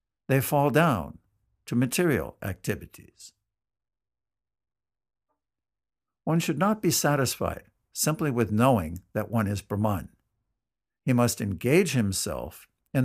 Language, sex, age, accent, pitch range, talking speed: English, male, 60-79, American, 110-145 Hz, 105 wpm